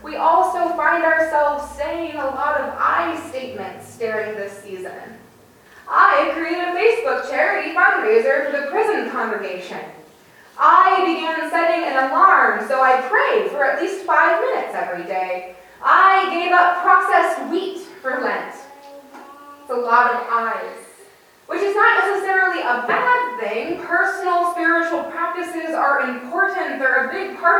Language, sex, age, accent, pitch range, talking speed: English, female, 20-39, American, 260-365 Hz, 130 wpm